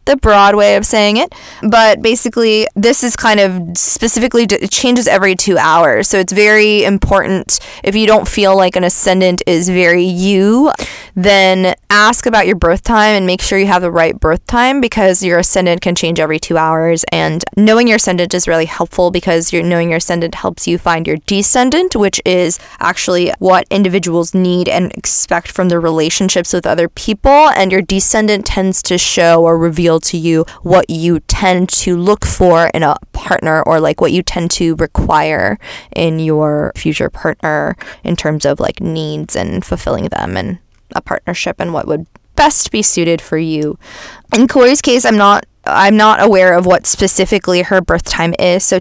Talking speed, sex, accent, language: 185 wpm, female, American, English